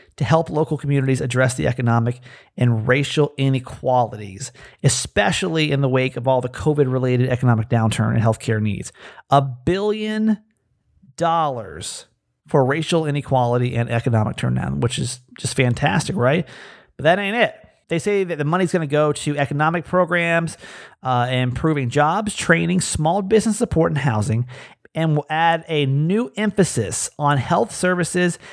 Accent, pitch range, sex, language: American, 130-180 Hz, male, English